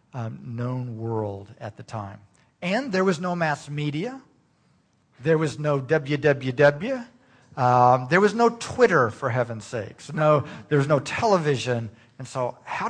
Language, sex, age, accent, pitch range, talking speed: English, male, 50-69, American, 120-150 Hz, 145 wpm